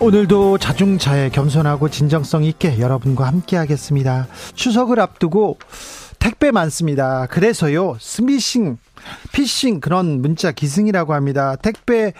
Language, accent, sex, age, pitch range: Korean, native, male, 40-59, 140-195 Hz